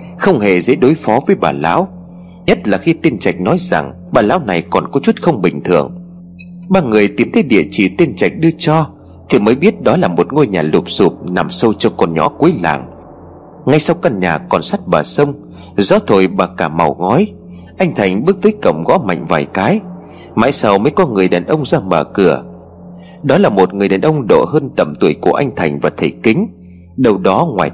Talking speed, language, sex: 225 wpm, Vietnamese, male